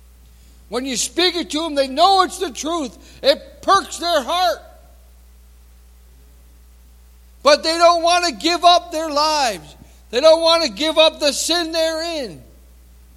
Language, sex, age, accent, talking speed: English, male, 60-79, American, 155 wpm